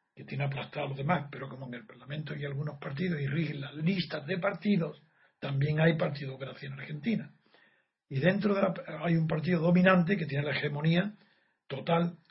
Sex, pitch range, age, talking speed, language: male, 145-190 Hz, 60-79, 190 wpm, Spanish